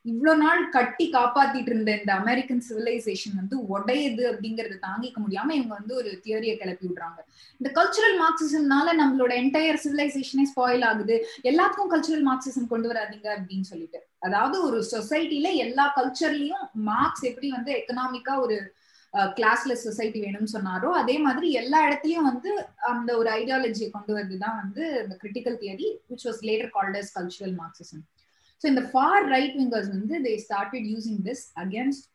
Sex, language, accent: female, Tamil, native